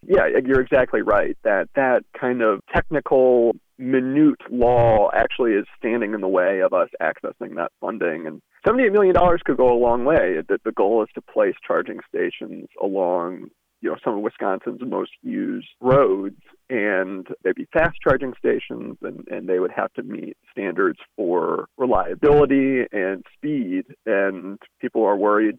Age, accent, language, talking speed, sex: 30-49, American, English, 160 wpm, male